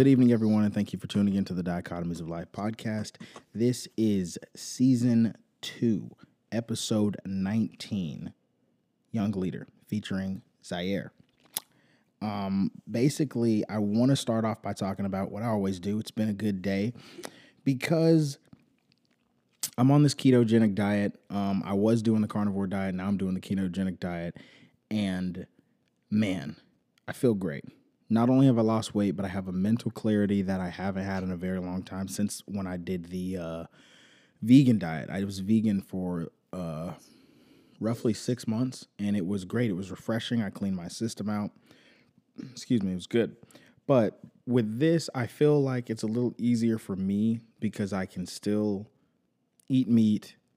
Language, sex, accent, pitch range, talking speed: English, male, American, 95-115 Hz, 165 wpm